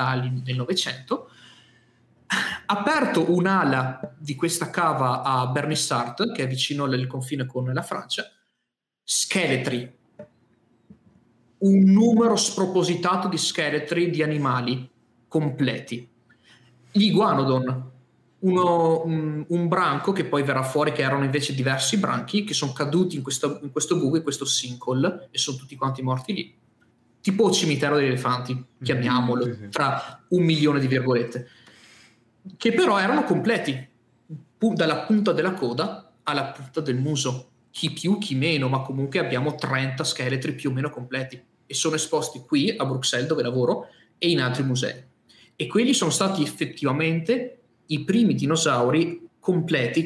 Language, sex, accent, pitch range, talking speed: Italian, male, native, 130-170 Hz, 135 wpm